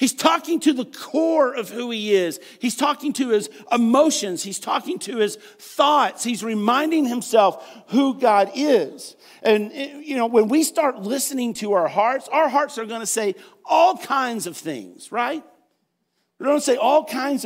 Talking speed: 180 wpm